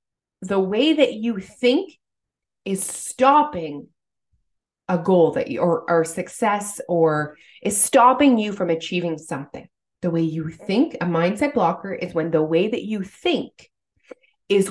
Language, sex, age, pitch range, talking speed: English, female, 30-49, 165-225 Hz, 145 wpm